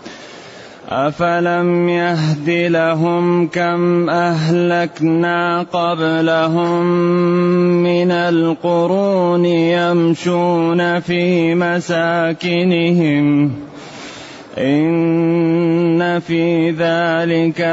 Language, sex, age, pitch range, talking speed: Arabic, male, 30-49, 170-180 Hz, 45 wpm